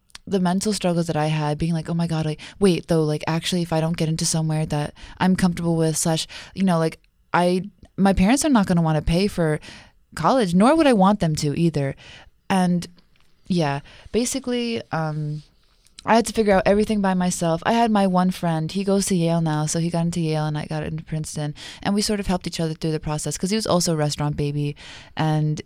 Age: 20-39